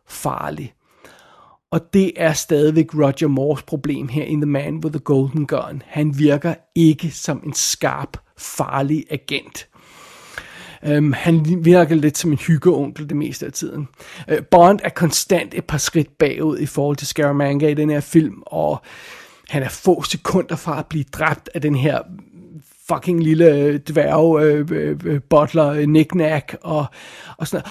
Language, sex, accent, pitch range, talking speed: Danish, male, native, 150-170 Hz, 155 wpm